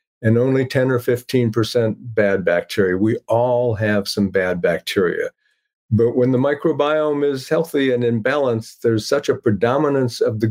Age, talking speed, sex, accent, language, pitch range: 50-69, 160 wpm, male, American, English, 110-140 Hz